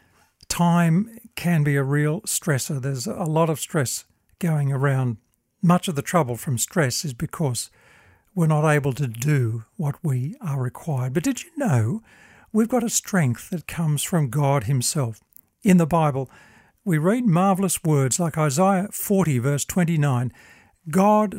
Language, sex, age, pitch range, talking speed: English, male, 60-79, 130-180 Hz, 155 wpm